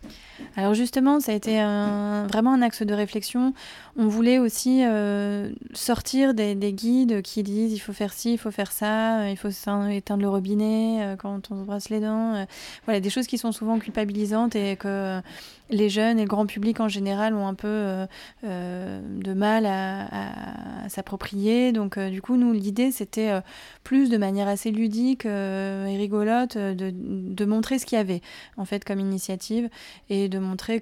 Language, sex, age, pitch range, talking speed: French, female, 20-39, 195-220 Hz, 190 wpm